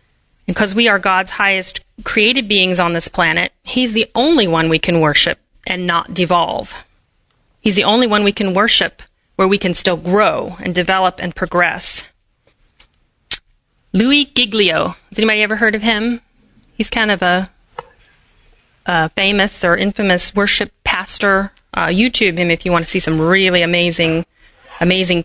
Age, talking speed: 30-49, 155 wpm